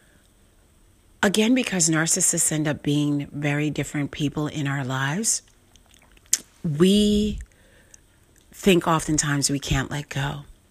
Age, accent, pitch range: 40-59, American, 140-170 Hz